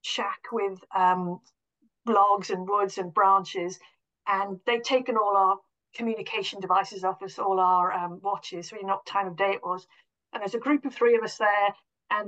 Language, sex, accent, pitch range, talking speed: English, female, British, 200-255 Hz, 195 wpm